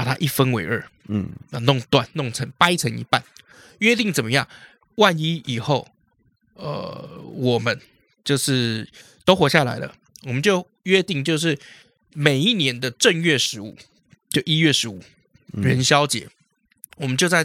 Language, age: Chinese, 20-39